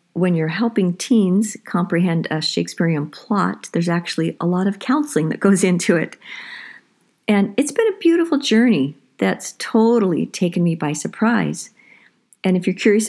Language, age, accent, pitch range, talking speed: English, 50-69, American, 170-215 Hz, 155 wpm